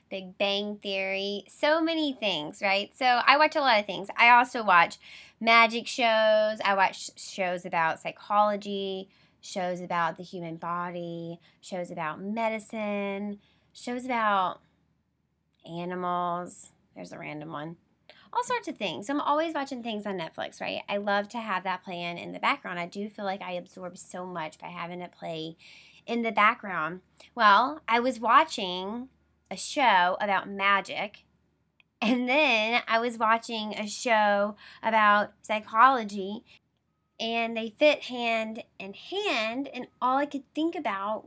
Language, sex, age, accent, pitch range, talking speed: English, female, 10-29, American, 185-235 Hz, 150 wpm